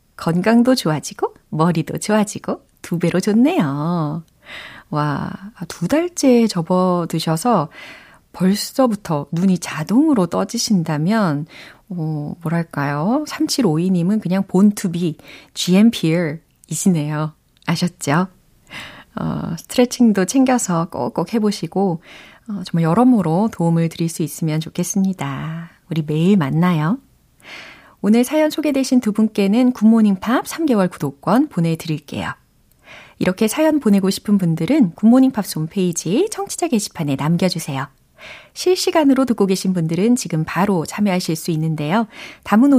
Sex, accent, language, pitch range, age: female, native, Korean, 165-245 Hz, 30-49